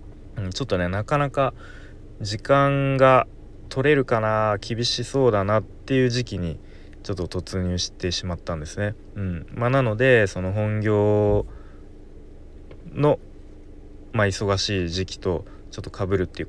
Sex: male